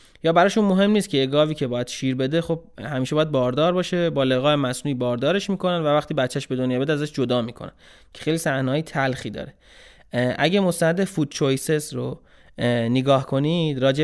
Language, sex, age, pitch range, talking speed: Persian, male, 20-39, 130-165 Hz, 180 wpm